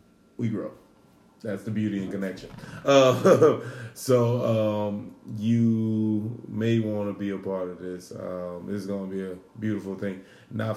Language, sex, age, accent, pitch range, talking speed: English, male, 30-49, American, 95-110 Hz, 155 wpm